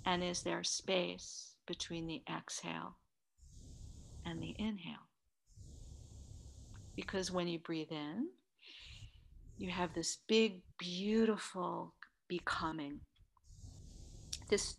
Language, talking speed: English, 90 wpm